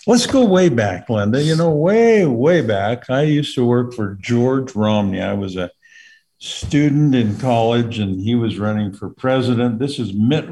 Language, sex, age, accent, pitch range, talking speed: English, male, 50-69, American, 105-130 Hz, 185 wpm